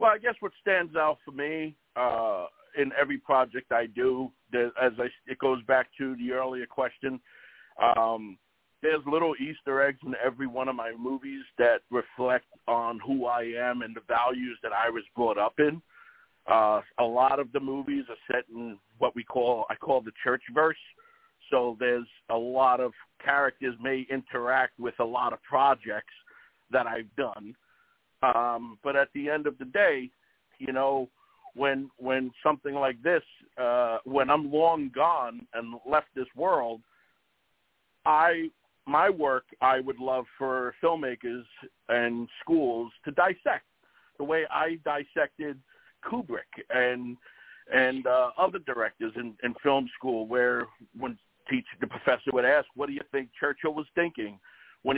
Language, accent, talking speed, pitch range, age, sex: English, American, 160 wpm, 120-145 Hz, 60-79, male